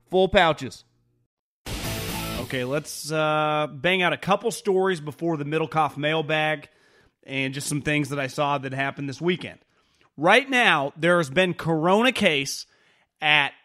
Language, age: English, 30-49